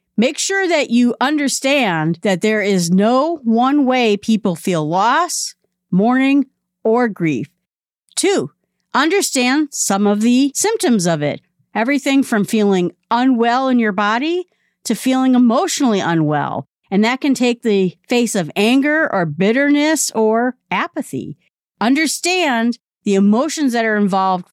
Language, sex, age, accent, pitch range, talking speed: English, female, 50-69, American, 200-275 Hz, 130 wpm